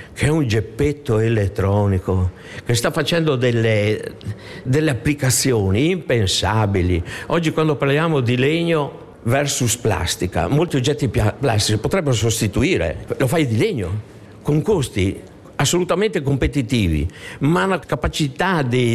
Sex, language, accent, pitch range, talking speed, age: male, Italian, native, 105-145 Hz, 115 wpm, 60-79